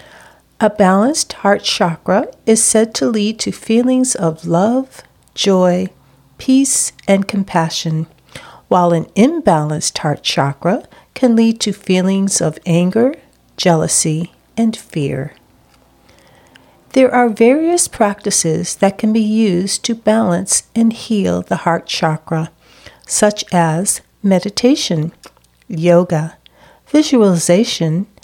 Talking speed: 105 wpm